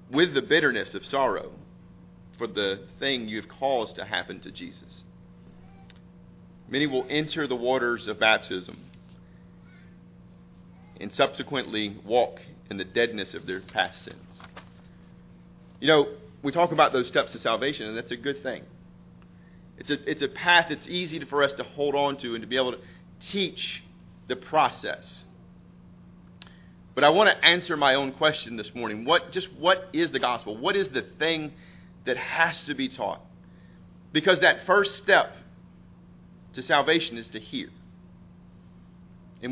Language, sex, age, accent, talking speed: English, male, 40-59, American, 155 wpm